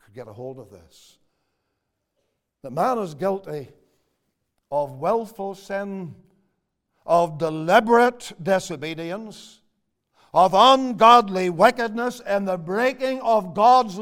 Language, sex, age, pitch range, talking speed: English, male, 60-79, 125-195 Hz, 100 wpm